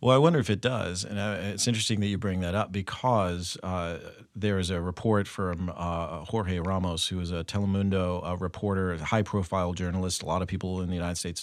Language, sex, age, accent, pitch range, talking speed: English, male, 40-59, American, 95-110 Hz, 215 wpm